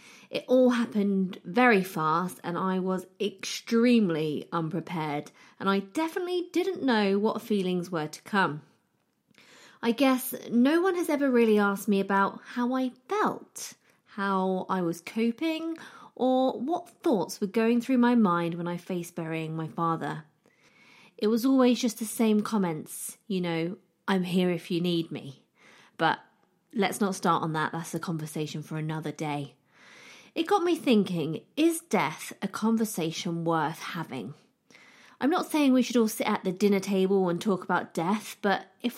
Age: 20-39